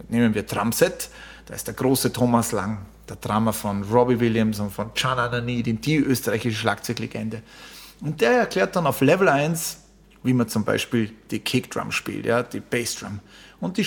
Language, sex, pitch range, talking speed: German, male, 115-140 Hz, 175 wpm